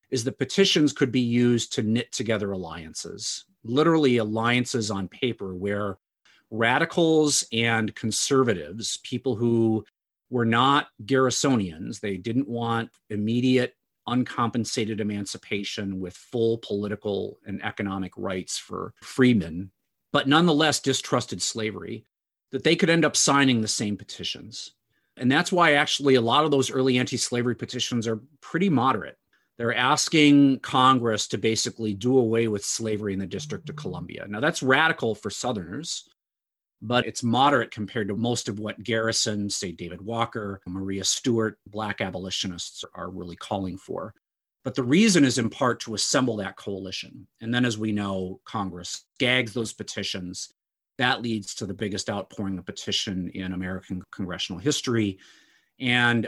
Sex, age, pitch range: male, 40-59, 100-130 Hz